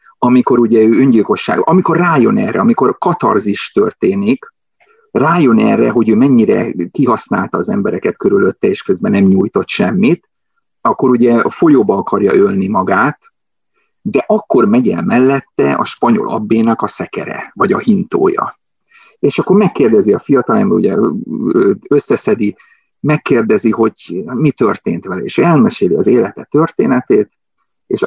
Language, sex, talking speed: Hungarian, male, 135 wpm